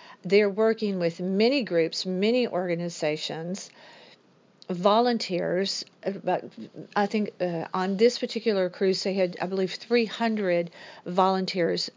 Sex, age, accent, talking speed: female, 50-69, American, 110 wpm